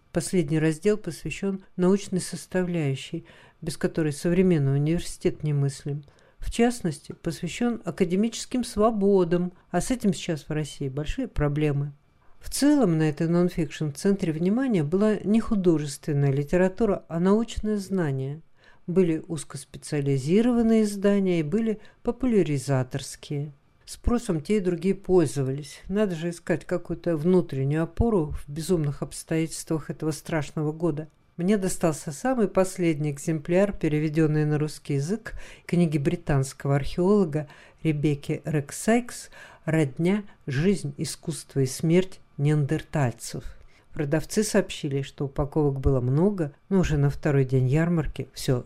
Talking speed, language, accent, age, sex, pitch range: 115 wpm, Russian, native, 50-69, female, 145-190 Hz